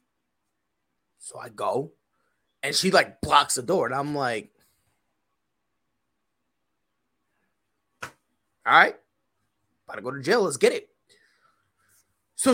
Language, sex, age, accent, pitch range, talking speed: English, male, 20-39, American, 135-190 Hz, 110 wpm